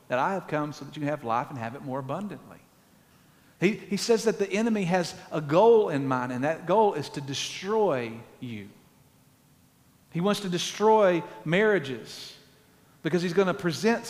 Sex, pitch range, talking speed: male, 140-210 Hz, 185 wpm